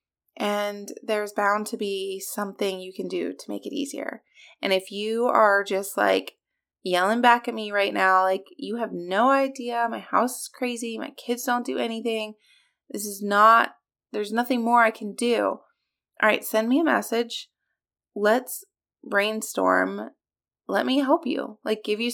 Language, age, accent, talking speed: English, 20-39, American, 170 wpm